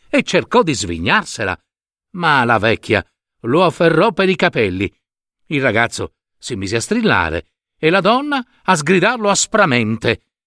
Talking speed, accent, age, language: 140 wpm, native, 60-79, Italian